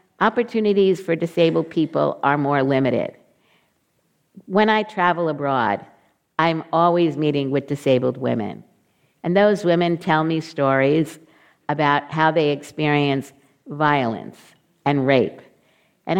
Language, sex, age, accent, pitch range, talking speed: English, female, 50-69, American, 140-180 Hz, 115 wpm